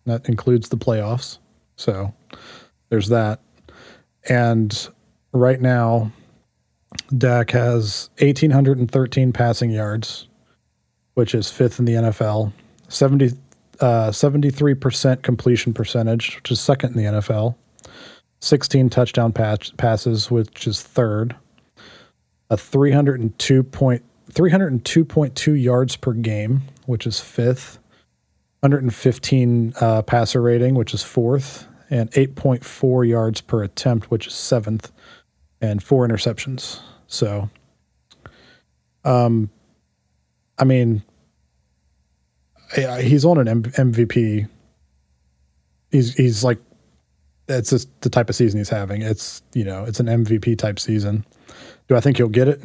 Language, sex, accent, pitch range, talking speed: English, male, American, 110-130 Hz, 115 wpm